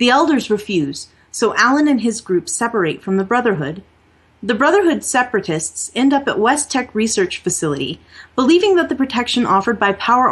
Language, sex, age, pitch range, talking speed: English, female, 30-49, 165-230 Hz, 170 wpm